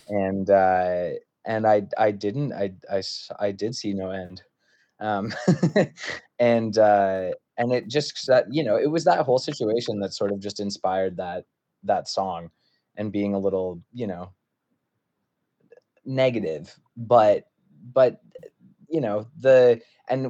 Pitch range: 100-125 Hz